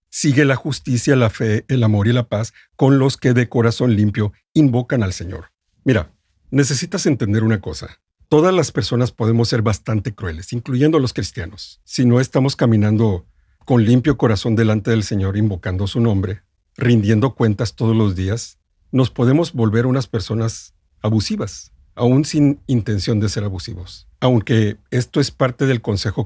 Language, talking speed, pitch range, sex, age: Spanish, 160 wpm, 100-130 Hz, male, 50-69